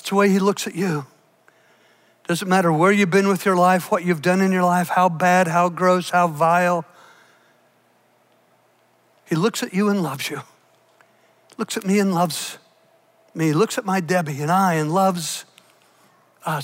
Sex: male